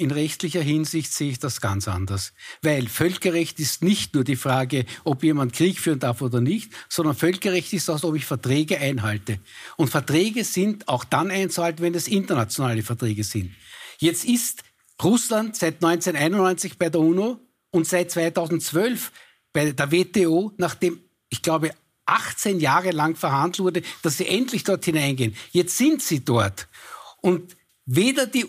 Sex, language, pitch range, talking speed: male, German, 150-200 Hz, 160 wpm